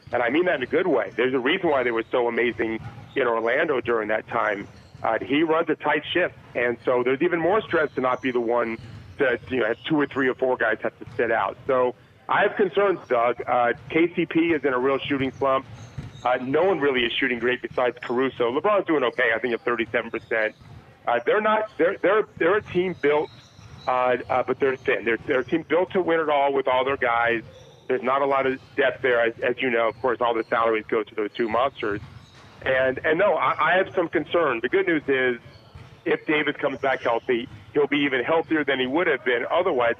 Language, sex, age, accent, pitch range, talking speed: English, male, 40-59, American, 120-150 Hz, 235 wpm